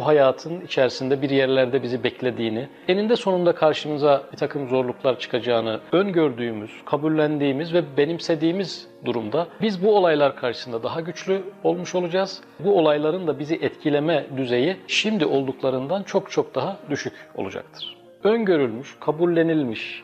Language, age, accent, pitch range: Turkish, 40-59, native, 130-170 Hz